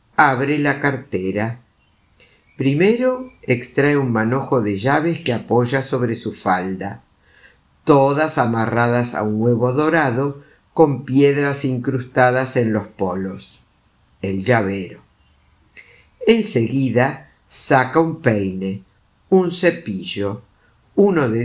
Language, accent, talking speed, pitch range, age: Spanish, Argentinian, 100 wpm, 115-155 Hz, 60-79